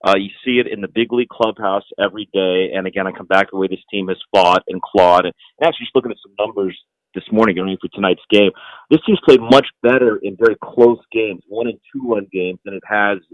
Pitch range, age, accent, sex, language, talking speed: 100-120 Hz, 40-59, American, male, English, 245 wpm